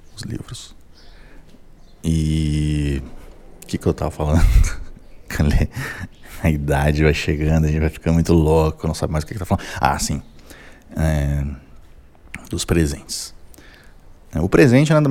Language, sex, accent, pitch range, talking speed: Portuguese, male, Brazilian, 80-115 Hz, 140 wpm